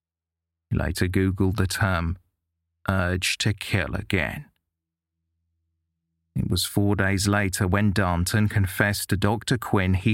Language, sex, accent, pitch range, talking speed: English, male, British, 85-100 Hz, 125 wpm